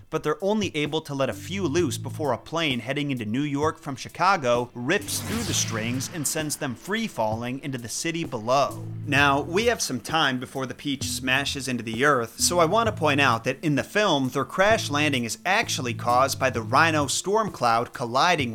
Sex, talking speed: male, 205 wpm